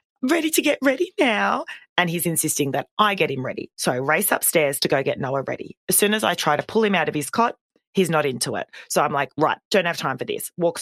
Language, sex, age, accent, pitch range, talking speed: English, female, 30-49, Australian, 140-195 Hz, 265 wpm